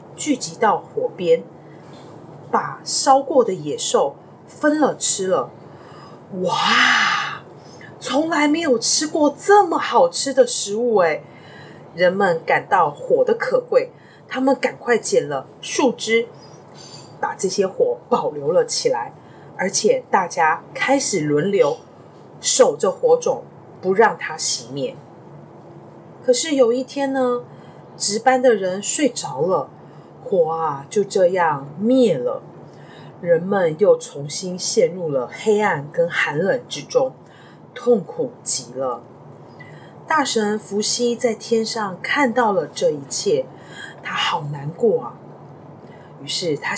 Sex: female